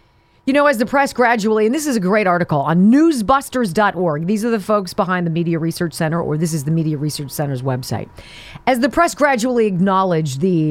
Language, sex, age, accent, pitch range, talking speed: English, female, 40-59, American, 150-255 Hz, 205 wpm